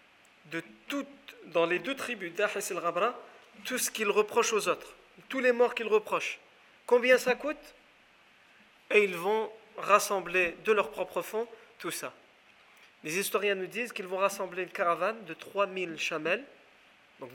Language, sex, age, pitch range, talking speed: French, male, 40-59, 170-235 Hz, 155 wpm